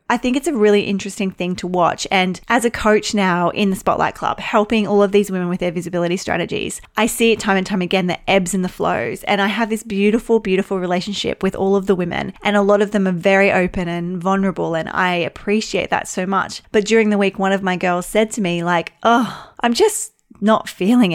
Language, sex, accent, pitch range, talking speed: English, female, Australian, 185-220 Hz, 240 wpm